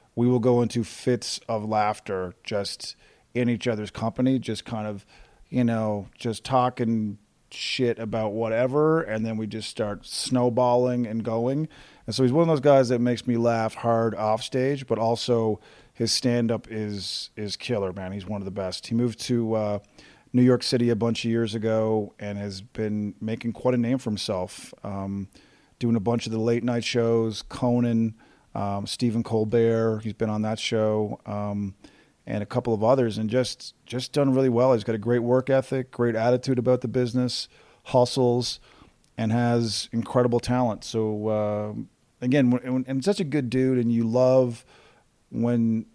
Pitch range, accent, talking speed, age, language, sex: 110-125 Hz, American, 180 wpm, 40-59, English, male